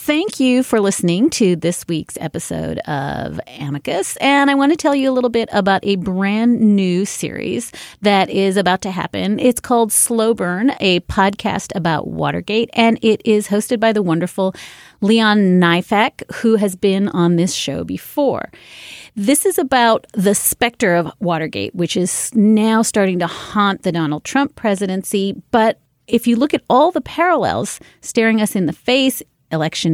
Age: 30-49